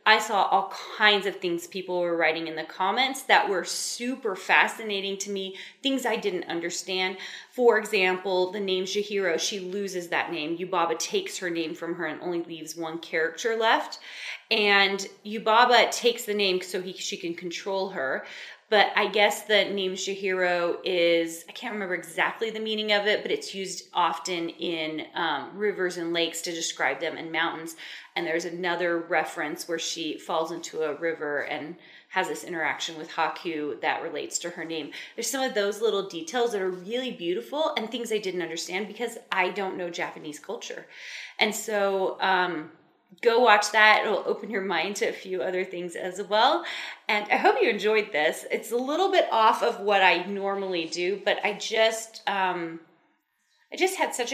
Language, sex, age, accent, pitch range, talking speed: English, female, 20-39, American, 175-220 Hz, 185 wpm